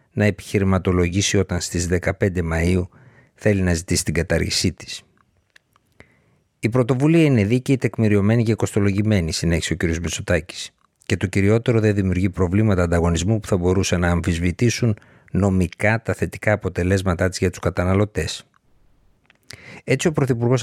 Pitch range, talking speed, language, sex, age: 85-110 Hz, 135 wpm, Greek, male, 60-79